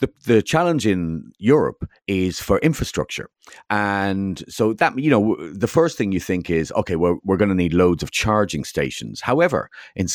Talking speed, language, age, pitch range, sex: 195 wpm, English, 40-59, 90-120 Hz, male